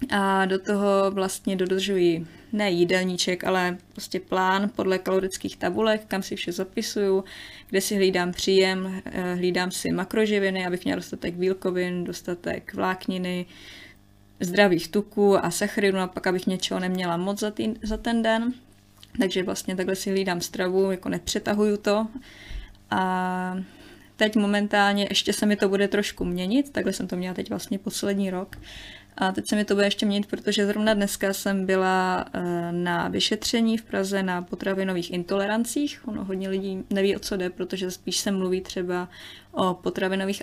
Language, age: Czech, 20-39